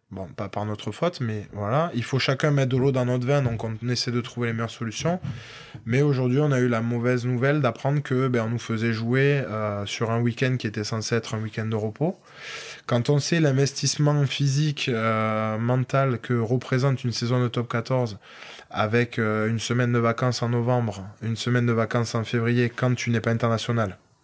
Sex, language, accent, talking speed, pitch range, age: male, French, French, 205 wpm, 110-130 Hz, 20-39